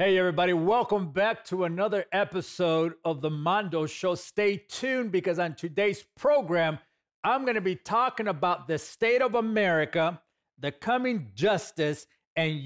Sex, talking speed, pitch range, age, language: male, 145 wpm, 155-195 Hz, 40-59, English